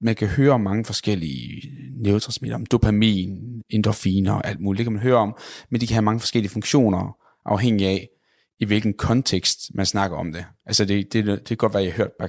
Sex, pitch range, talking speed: male, 100-125 Hz, 215 wpm